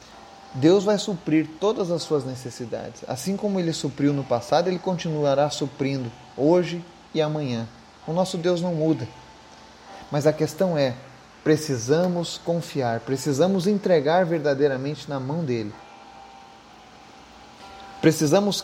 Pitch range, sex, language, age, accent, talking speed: 130-175 Hz, male, Portuguese, 30-49, Brazilian, 120 wpm